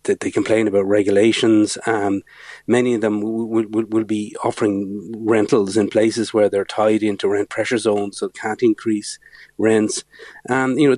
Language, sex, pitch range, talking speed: English, male, 100-120 Hz, 175 wpm